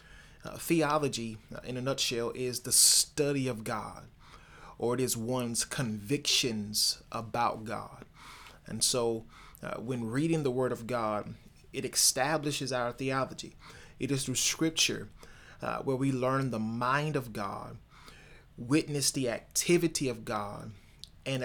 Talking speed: 135 wpm